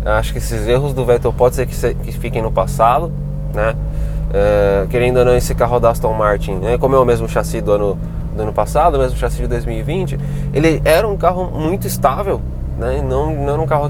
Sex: male